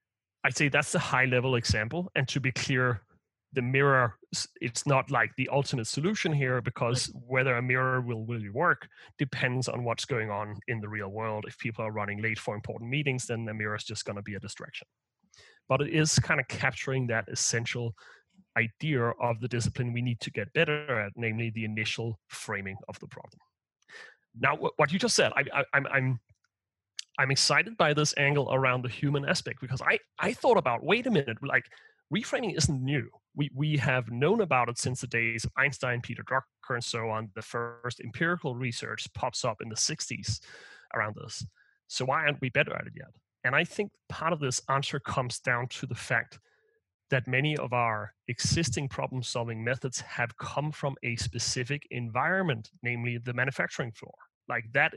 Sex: male